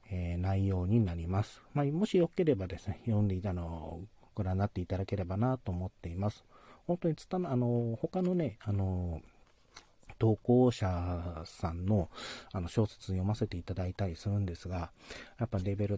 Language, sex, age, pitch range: Japanese, male, 40-59, 95-125 Hz